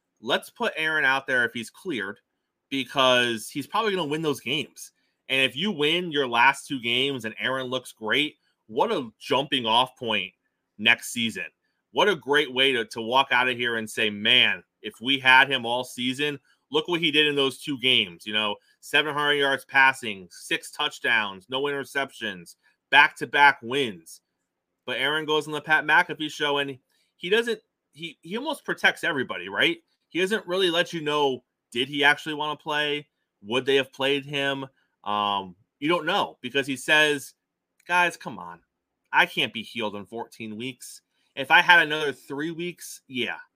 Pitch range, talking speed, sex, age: 120-155 Hz, 180 wpm, male, 30-49